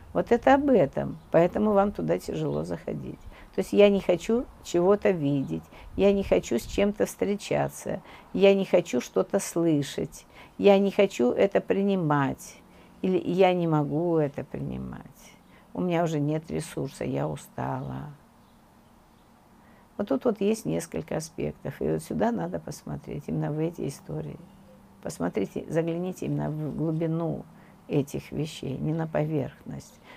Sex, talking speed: female, 140 wpm